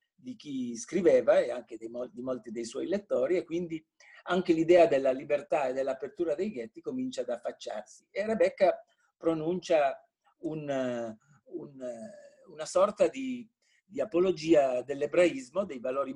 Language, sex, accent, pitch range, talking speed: Italian, male, native, 130-210 Hz, 125 wpm